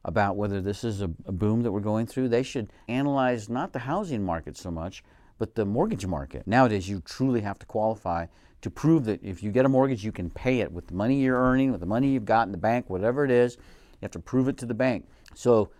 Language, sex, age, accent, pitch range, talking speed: English, male, 50-69, American, 90-125 Hz, 250 wpm